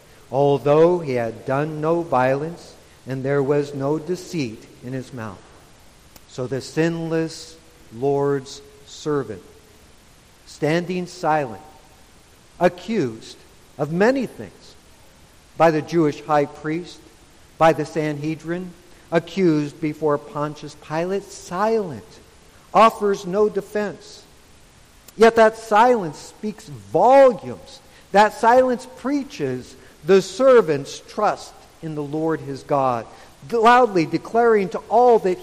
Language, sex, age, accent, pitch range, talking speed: English, male, 60-79, American, 140-200 Hz, 105 wpm